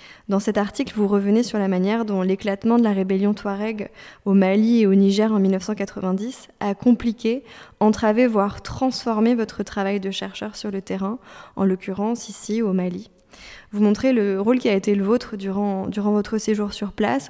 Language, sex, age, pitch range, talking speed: French, female, 20-39, 195-220 Hz, 185 wpm